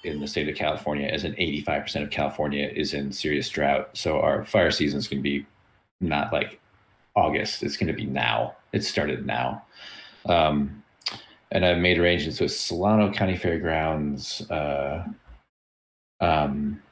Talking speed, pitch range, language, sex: 155 wpm, 75-95 Hz, English, male